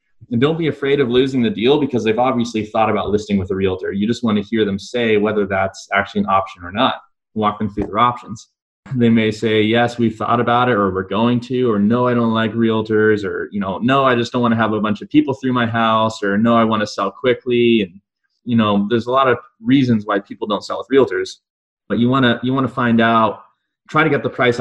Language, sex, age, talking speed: English, male, 20-39, 260 wpm